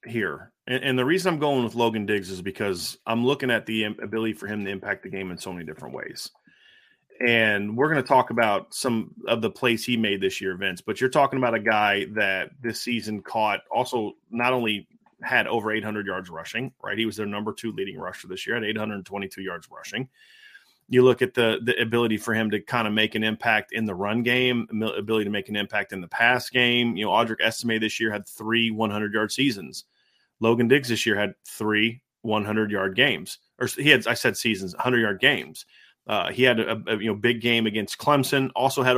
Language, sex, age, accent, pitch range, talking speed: English, male, 30-49, American, 105-120 Hz, 220 wpm